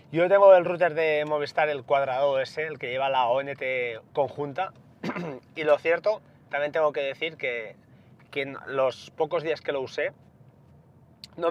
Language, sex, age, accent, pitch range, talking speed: Spanish, male, 20-39, Spanish, 135-155 Hz, 165 wpm